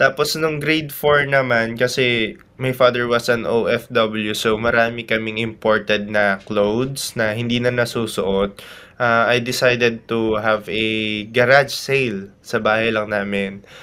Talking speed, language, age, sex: 145 wpm, Filipino, 20-39, male